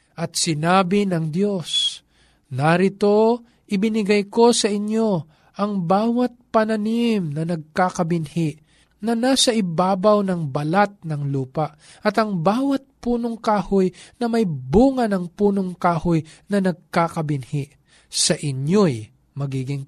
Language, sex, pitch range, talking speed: Filipino, male, 145-200 Hz, 110 wpm